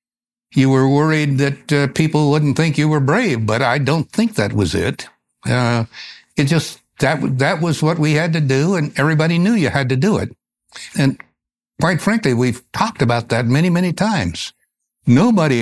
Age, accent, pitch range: 60-79, American, 120-180 Hz